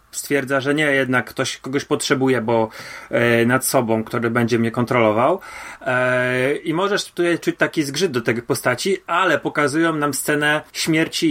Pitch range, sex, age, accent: 120-155 Hz, male, 30-49, native